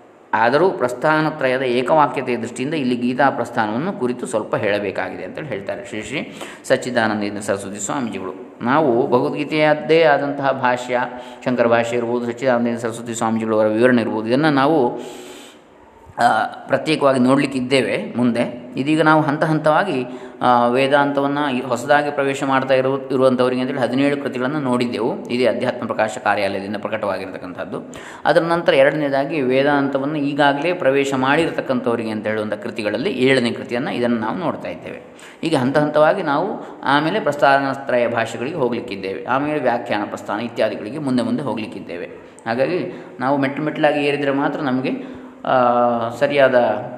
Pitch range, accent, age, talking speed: 120-140 Hz, native, 20-39, 120 wpm